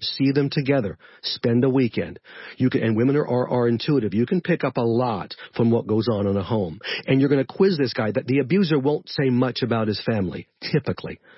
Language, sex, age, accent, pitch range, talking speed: English, male, 50-69, American, 130-180 Hz, 230 wpm